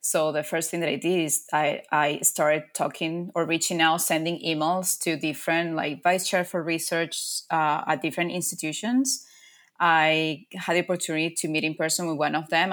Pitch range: 155-175 Hz